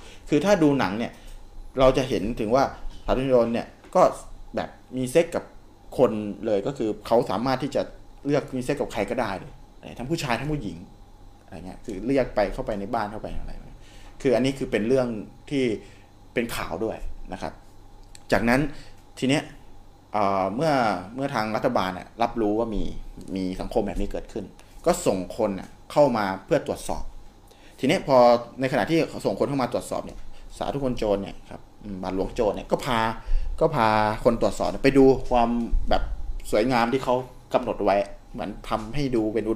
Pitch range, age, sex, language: 100-130 Hz, 20-39, male, Thai